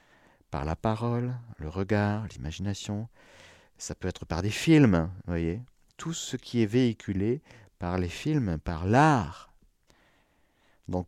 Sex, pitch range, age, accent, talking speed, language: male, 85-125 Hz, 50-69, French, 135 wpm, French